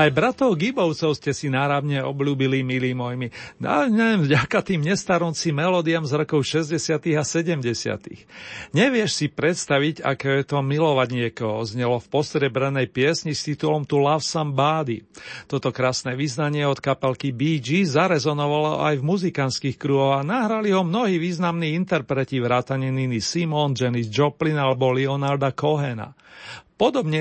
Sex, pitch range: male, 130-170 Hz